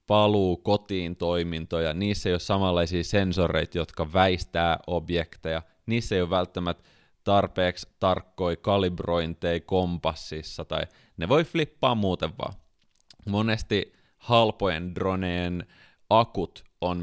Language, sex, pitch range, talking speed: Finnish, male, 85-100 Hz, 105 wpm